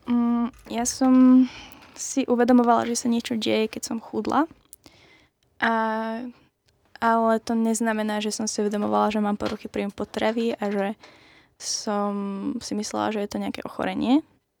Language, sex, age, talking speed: Slovak, female, 10-29, 140 wpm